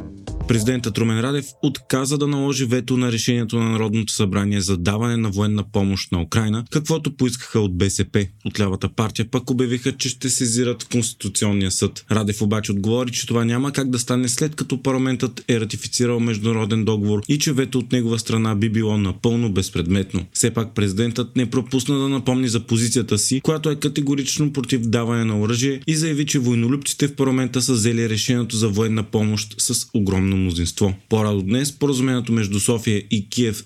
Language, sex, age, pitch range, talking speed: Bulgarian, male, 20-39, 105-130 Hz, 170 wpm